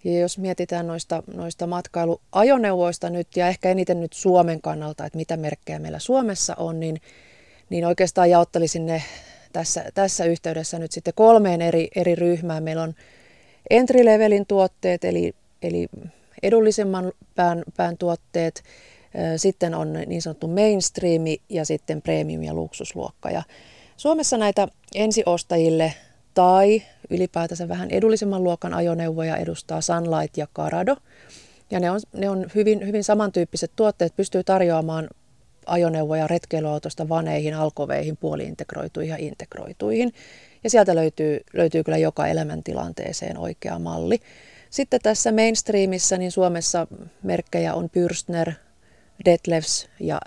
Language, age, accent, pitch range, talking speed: Finnish, 30-49, native, 160-195 Hz, 125 wpm